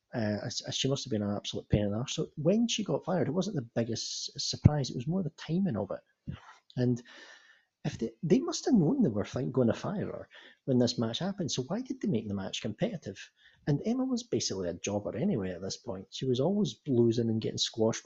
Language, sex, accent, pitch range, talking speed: English, male, British, 110-145 Hz, 235 wpm